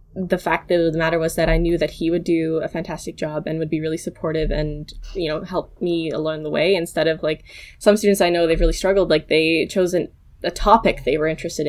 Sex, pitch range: female, 160-190 Hz